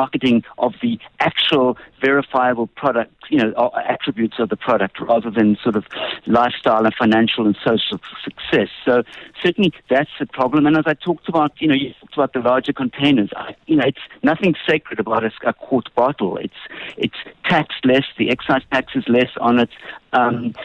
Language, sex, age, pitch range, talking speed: English, male, 50-69, 115-150 Hz, 175 wpm